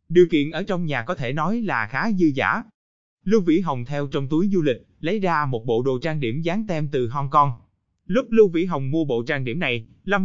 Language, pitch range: Vietnamese, 130-180 Hz